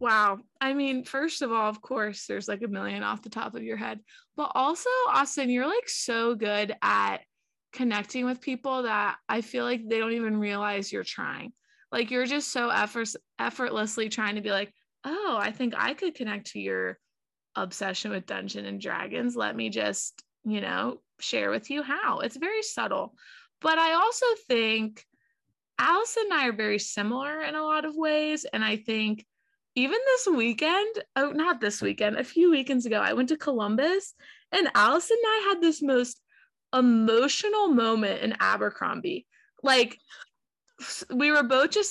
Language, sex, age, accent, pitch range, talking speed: English, female, 20-39, American, 225-315 Hz, 175 wpm